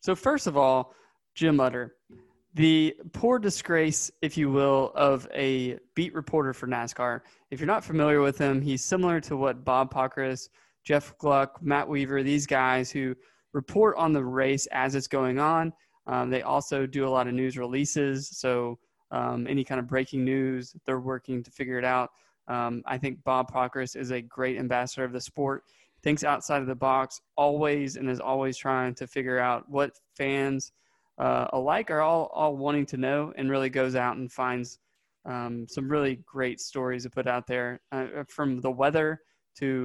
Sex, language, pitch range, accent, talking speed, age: male, English, 130-145 Hz, American, 185 wpm, 20-39